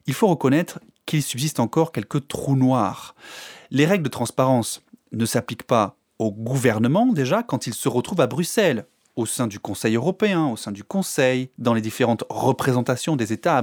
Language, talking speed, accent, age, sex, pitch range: French, 180 wpm, French, 30-49, male, 120-170 Hz